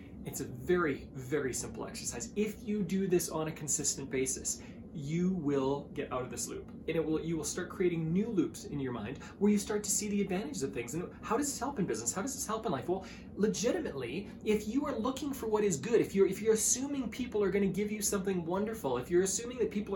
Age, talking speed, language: 20-39, 245 wpm, English